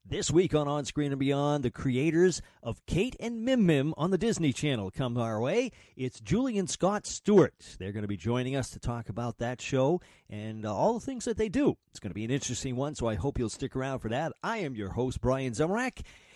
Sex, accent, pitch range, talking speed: male, American, 110-155 Hz, 240 wpm